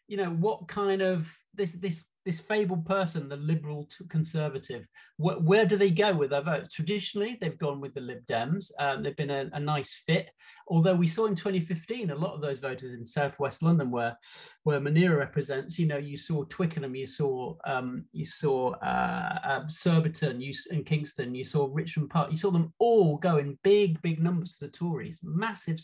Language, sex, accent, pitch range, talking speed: English, male, British, 145-185 Hz, 195 wpm